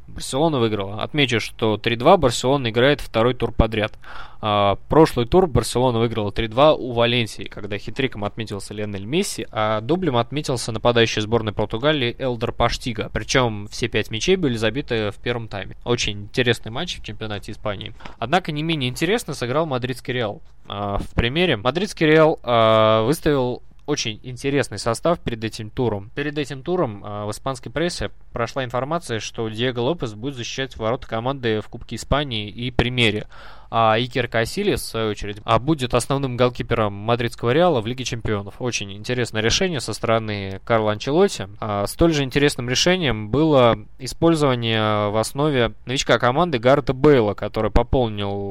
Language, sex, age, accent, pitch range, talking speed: Russian, male, 20-39, native, 110-135 Hz, 145 wpm